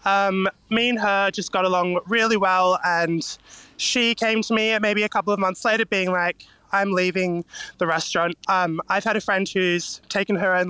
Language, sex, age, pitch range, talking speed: English, male, 20-39, 175-215 Hz, 195 wpm